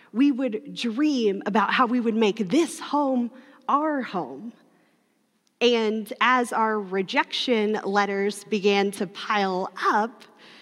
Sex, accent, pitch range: female, American, 225-290 Hz